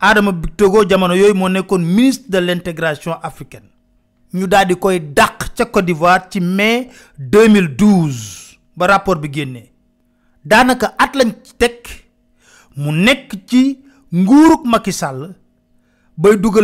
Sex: male